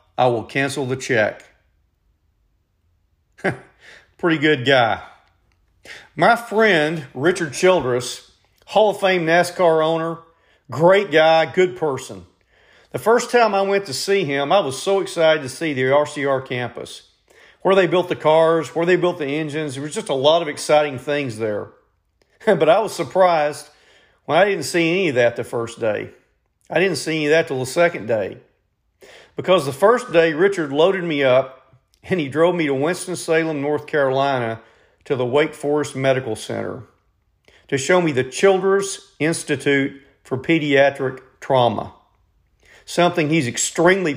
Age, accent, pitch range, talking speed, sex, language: 40-59, American, 130-170 Hz, 155 wpm, male, English